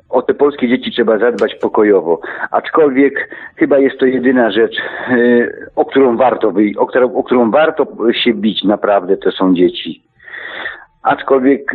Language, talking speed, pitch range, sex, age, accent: Polish, 135 wpm, 110-135 Hz, male, 50-69, native